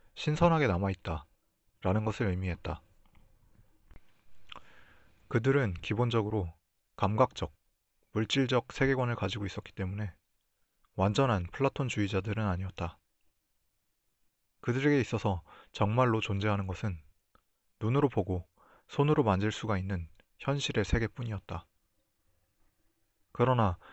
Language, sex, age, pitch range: Korean, male, 30-49, 95-115 Hz